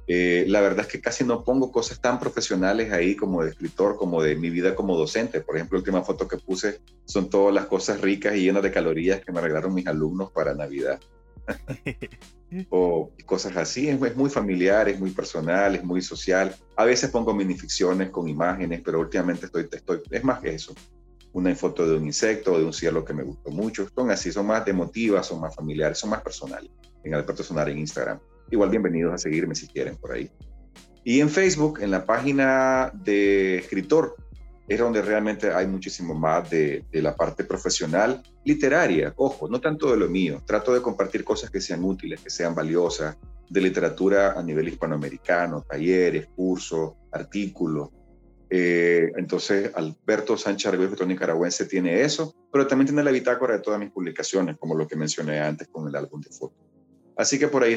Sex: male